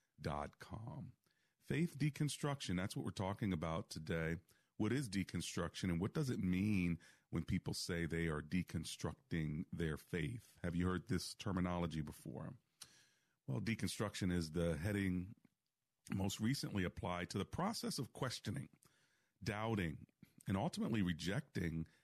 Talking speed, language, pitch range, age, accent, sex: 135 wpm, English, 90-110 Hz, 40-59, American, male